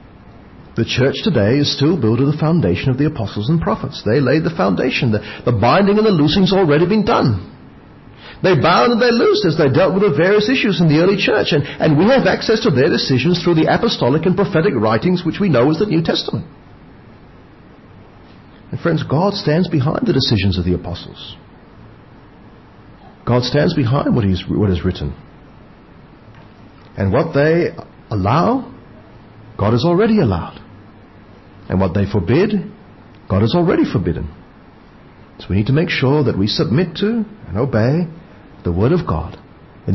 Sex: male